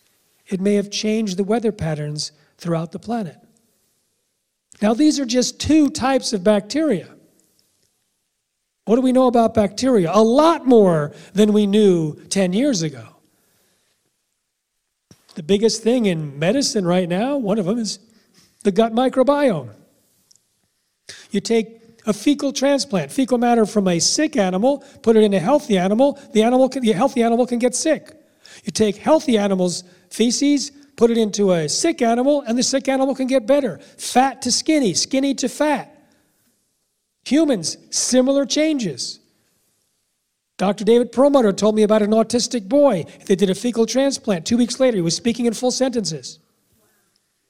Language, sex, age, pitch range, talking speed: English, male, 40-59, 205-265 Hz, 155 wpm